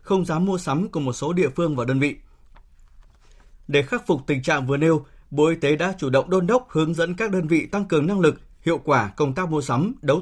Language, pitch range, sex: Vietnamese, 145-185 Hz, male